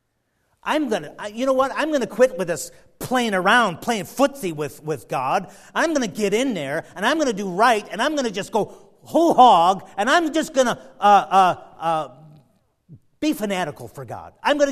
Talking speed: 215 wpm